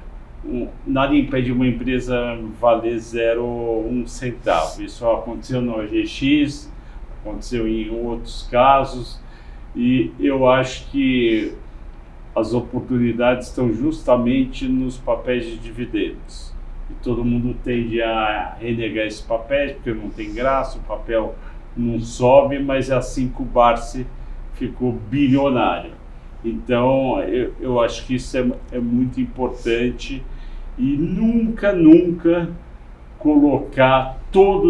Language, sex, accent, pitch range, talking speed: Portuguese, male, Brazilian, 115-135 Hz, 120 wpm